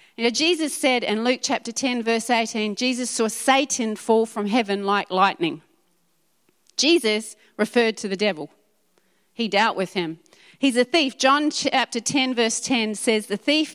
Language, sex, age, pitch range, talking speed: English, female, 40-59, 195-260 Hz, 165 wpm